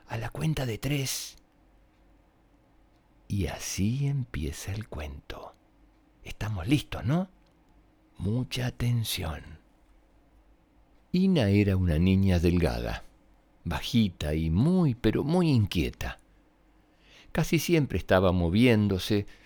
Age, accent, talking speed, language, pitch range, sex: 60-79, Argentinian, 95 wpm, Spanish, 90-135 Hz, male